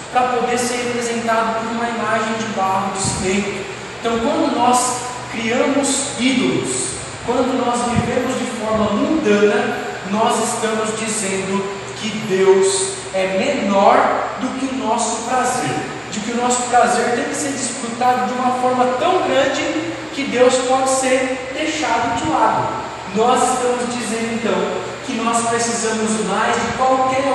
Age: 20-39